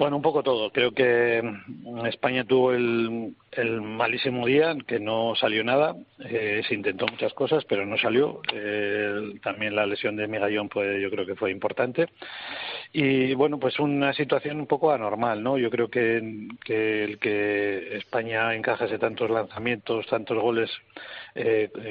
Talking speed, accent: 160 wpm, Spanish